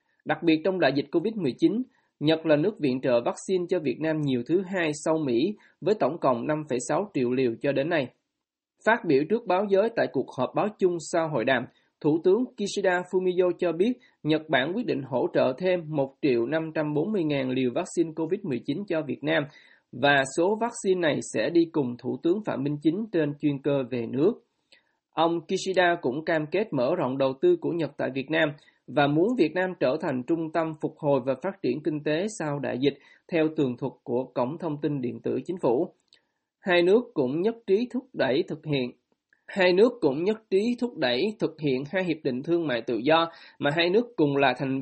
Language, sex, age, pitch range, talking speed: Vietnamese, male, 20-39, 140-190 Hz, 210 wpm